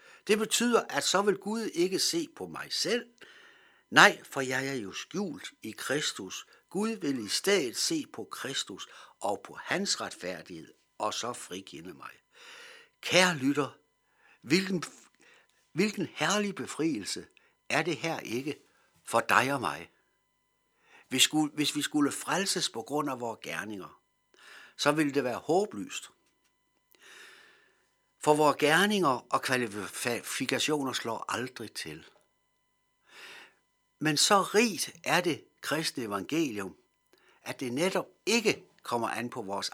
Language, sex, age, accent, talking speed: Danish, male, 60-79, native, 130 wpm